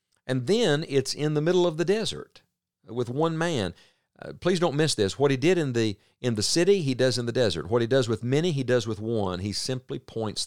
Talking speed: 240 wpm